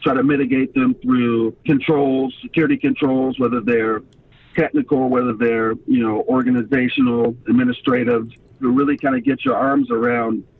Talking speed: 140 wpm